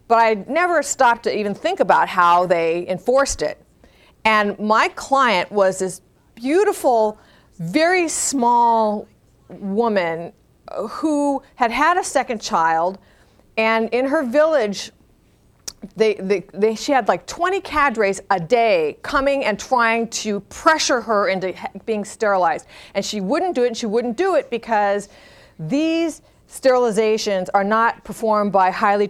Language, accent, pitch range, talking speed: English, American, 185-240 Hz, 135 wpm